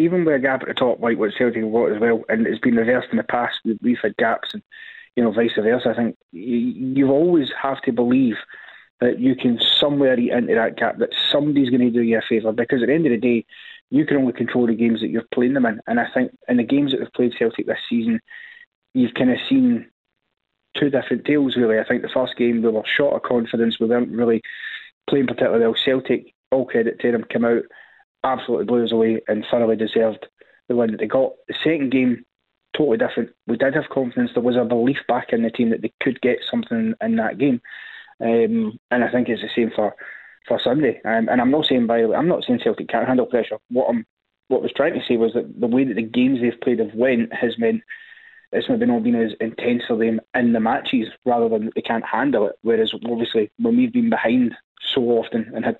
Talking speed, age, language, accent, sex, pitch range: 240 wpm, 30-49, English, British, male, 115-155 Hz